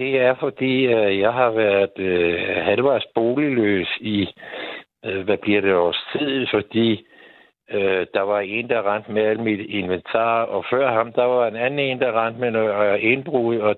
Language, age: Danish, 60-79